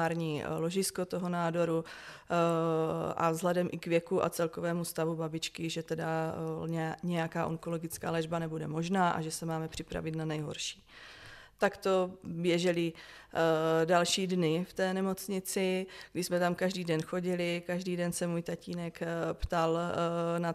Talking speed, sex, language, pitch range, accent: 135 wpm, female, Czech, 165-175 Hz, native